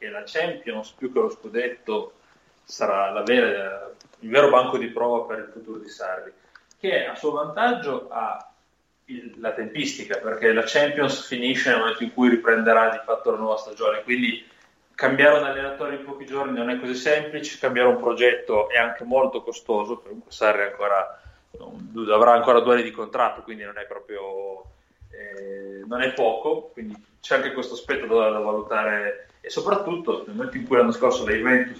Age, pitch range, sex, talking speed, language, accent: 30-49, 115-160 Hz, male, 180 wpm, Italian, native